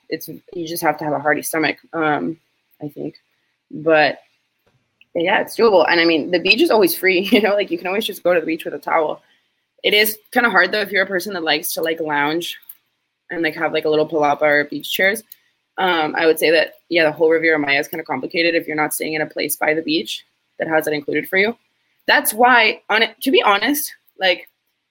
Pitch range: 150-205 Hz